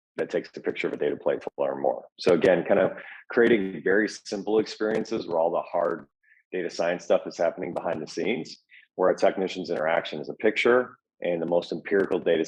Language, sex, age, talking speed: English, male, 30-49, 205 wpm